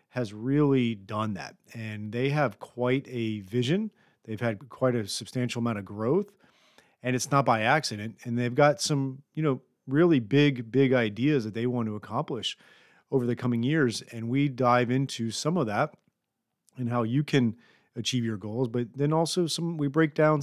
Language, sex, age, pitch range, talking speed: English, male, 40-59, 115-140 Hz, 185 wpm